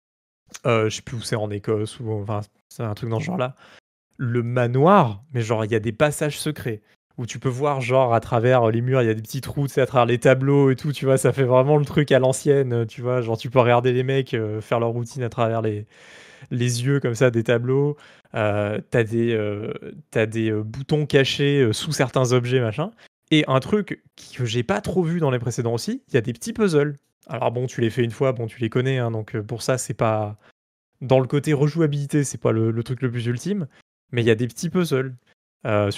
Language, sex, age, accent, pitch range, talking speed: French, male, 20-39, French, 115-140 Hz, 240 wpm